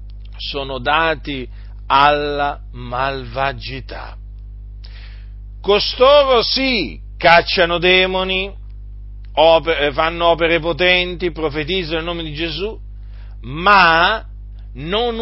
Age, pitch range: 50-69, 100-165 Hz